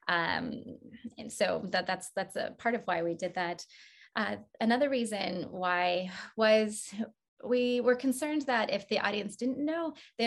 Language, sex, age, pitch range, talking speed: English, female, 20-39, 185-255 Hz, 165 wpm